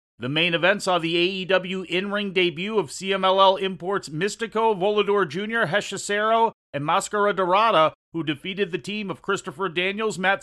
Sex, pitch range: male, 150-195 Hz